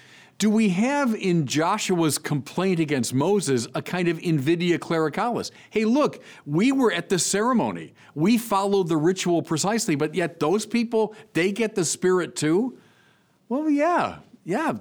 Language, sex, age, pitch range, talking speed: English, male, 50-69, 140-205 Hz, 150 wpm